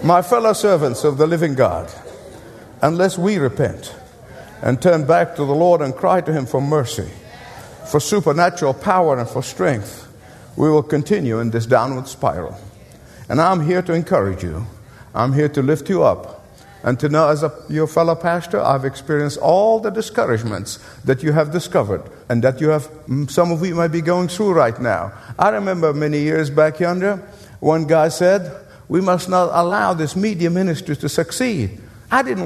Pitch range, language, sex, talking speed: 140-195 Hz, English, male, 180 wpm